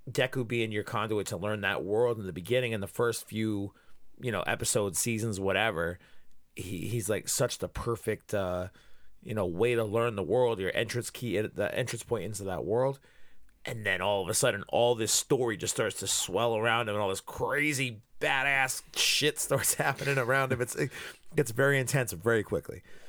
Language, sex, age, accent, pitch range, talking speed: English, male, 30-49, American, 110-135 Hz, 190 wpm